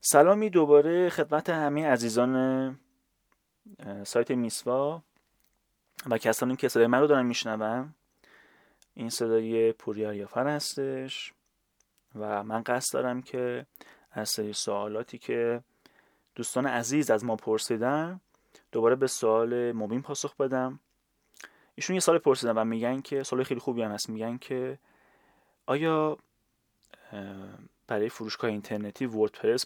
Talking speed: 120 wpm